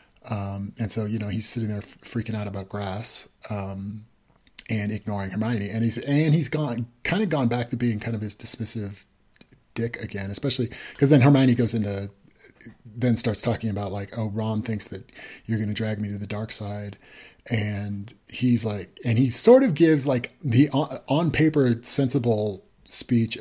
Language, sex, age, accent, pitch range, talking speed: English, male, 30-49, American, 105-120 Hz, 185 wpm